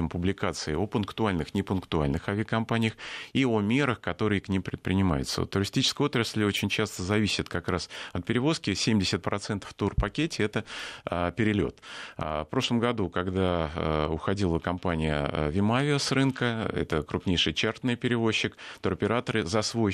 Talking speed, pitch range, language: 125 wpm, 85-110 Hz, Russian